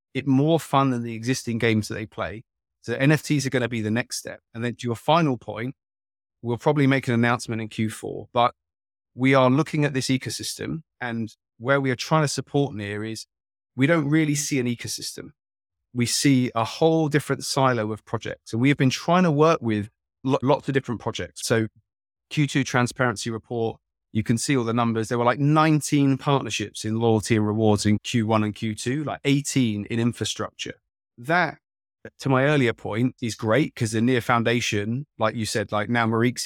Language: English